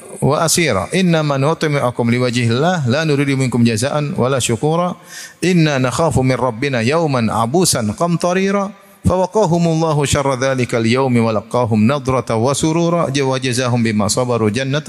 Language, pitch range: Indonesian, 125-165 Hz